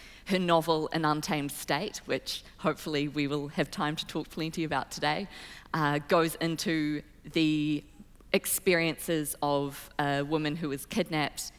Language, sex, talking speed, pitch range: English, female, 140 wpm, 145-165 Hz